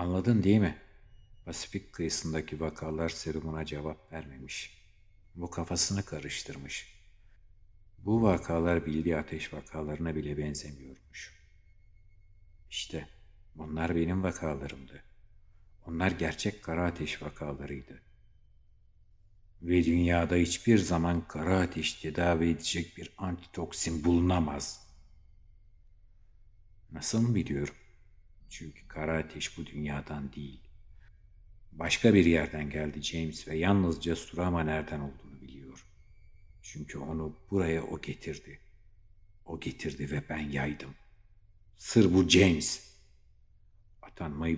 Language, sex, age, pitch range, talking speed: Turkish, male, 60-79, 75-100 Hz, 95 wpm